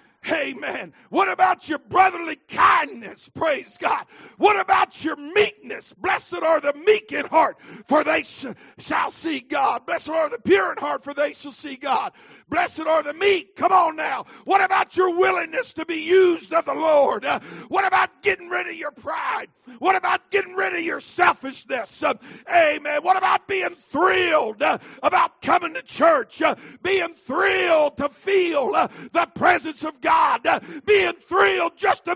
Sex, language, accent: male, English, American